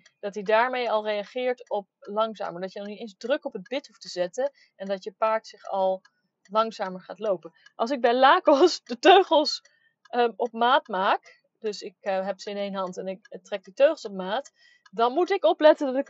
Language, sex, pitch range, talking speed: Dutch, female, 195-285 Hz, 220 wpm